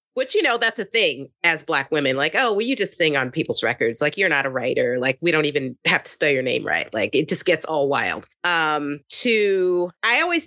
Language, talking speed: English, 245 wpm